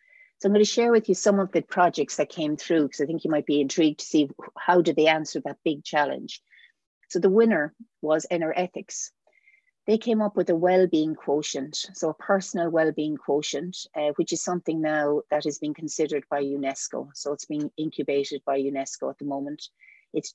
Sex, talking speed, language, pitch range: female, 205 wpm, English, 145-175 Hz